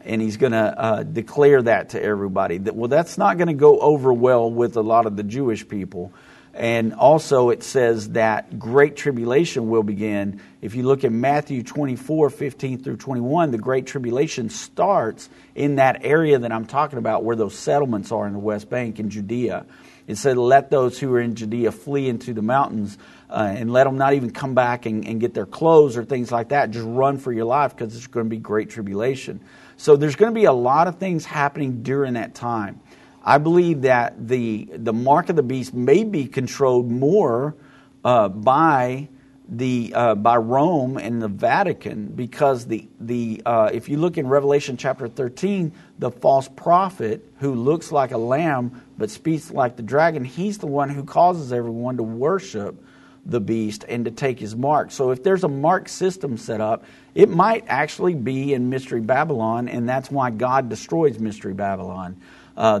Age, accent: 50-69, American